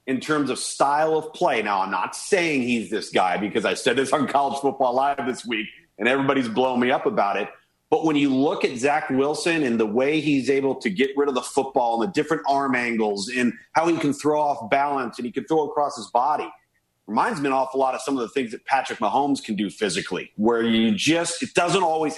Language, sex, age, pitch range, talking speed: English, male, 40-59, 125-155 Hz, 240 wpm